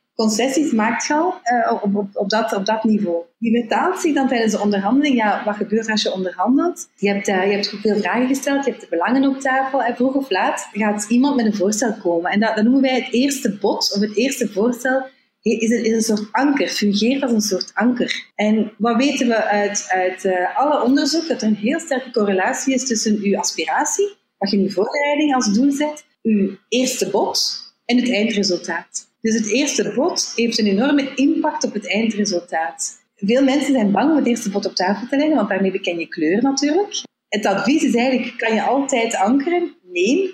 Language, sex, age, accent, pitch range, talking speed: Dutch, female, 30-49, Dutch, 205-270 Hz, 210 wpm